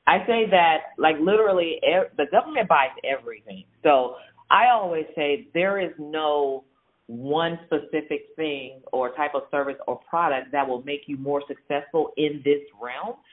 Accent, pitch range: American, 130-160 Hz